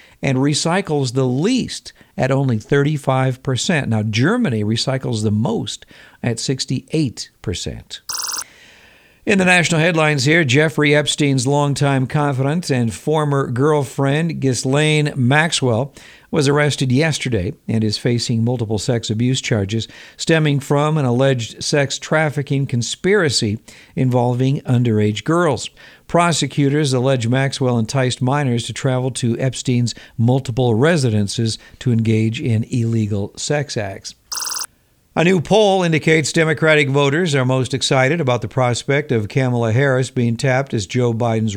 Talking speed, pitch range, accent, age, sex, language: 125 wpm, 115-145 Hz, American, 60-79, male, English